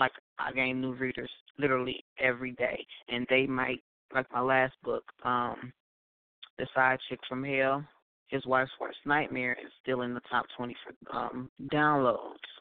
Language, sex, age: English, female, 20-39